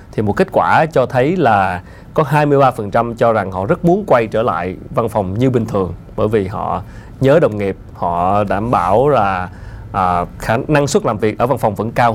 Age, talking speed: 20-39, 210 wpm